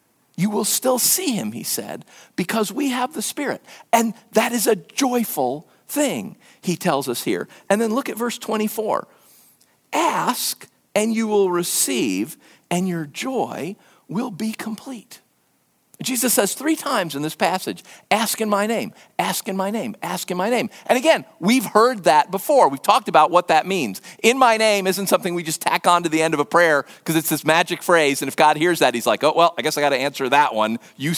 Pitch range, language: 185-255 Hz, English